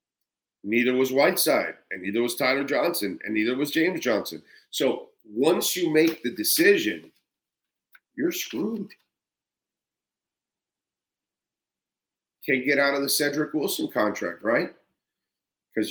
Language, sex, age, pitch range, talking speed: English, male, 50-69, 110-160 Hz, 115 wpm